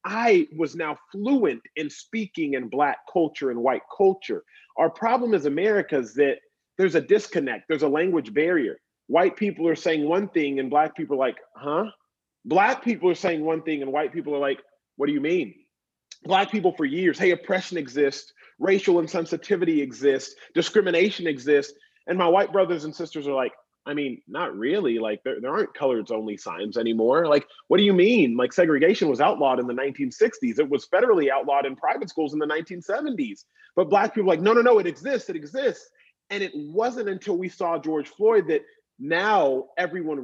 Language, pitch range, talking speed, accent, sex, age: English, 145-225 Hz, 190 wpm, American, male, 30-49